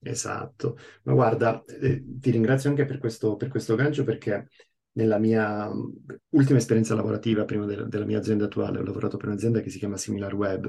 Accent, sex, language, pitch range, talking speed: native, male, Italian, 100-115 Hz, 185 wpm